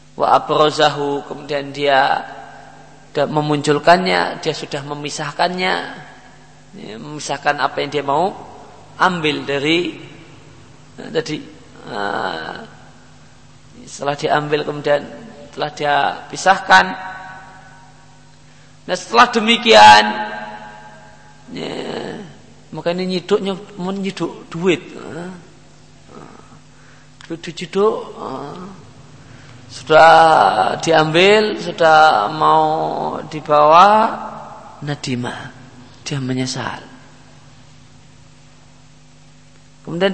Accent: native